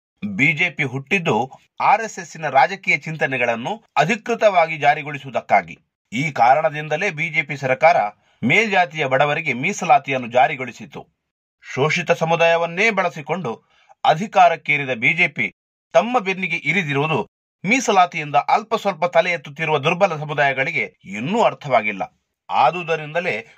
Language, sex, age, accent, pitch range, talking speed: Kannada, male, 30-49, native, 145-200 Hz, 90 wpm